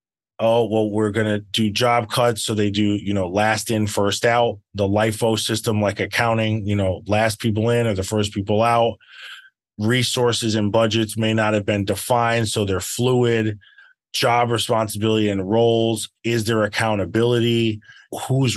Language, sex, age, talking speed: English, male, 30-49, 160 wpm